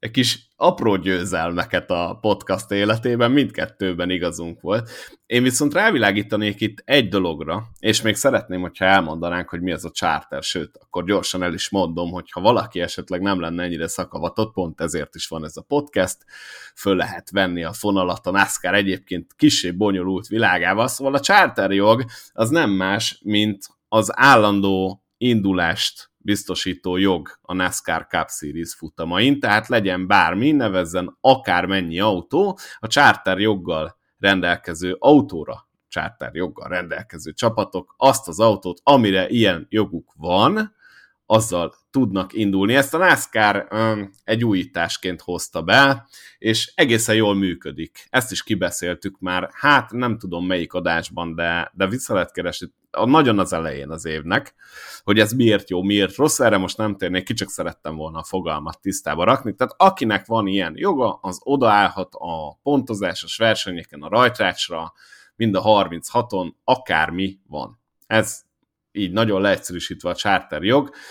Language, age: Hungarian, 30-49